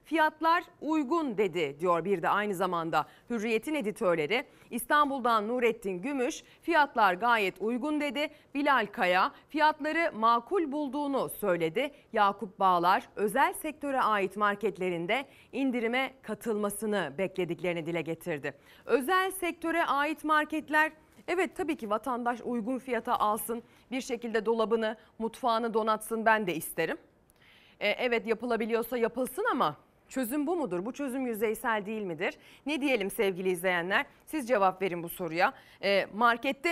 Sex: female